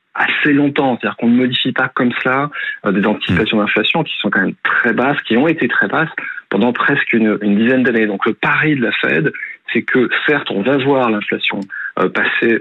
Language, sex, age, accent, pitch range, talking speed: French, male, 40-59, French, 105-130 Hz, 215 wpm